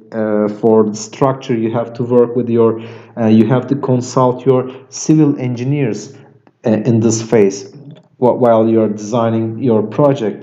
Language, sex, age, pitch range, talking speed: English, male, 40-59, 115-130 Hz, 165 wpm